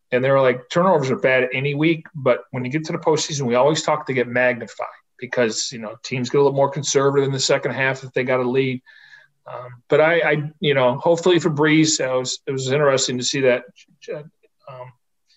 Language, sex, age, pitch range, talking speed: English, male, 40-59, 125-150 Hz, 225 wpm